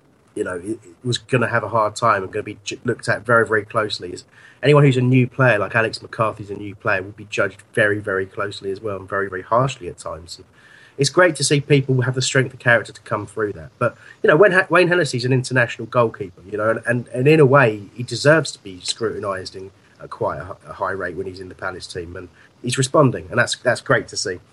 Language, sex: English, male